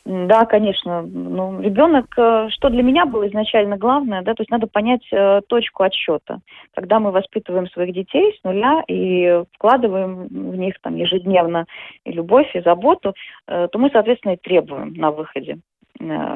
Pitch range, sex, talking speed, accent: 180-235 Hz, female, 160 wpm, native